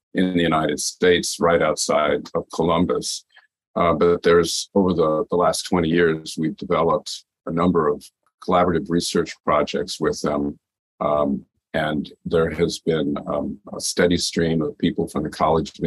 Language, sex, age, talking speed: English, male, 50-69, 160 wpm